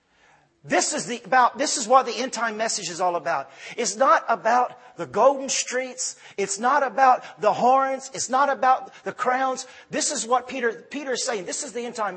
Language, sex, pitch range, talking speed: English, male, 175-240 Hz, 205 wpm